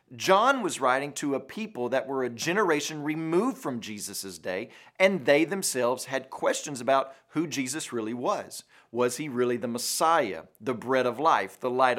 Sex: male